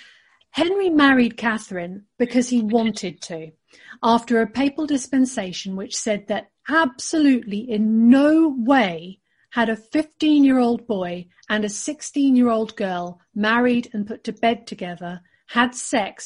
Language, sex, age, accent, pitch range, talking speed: English, female, 40-59, British, 190-255 Hz, 125 wpm